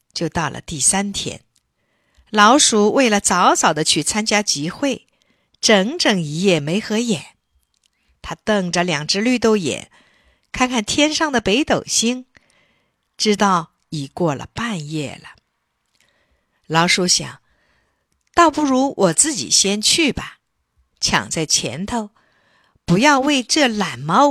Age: 50-69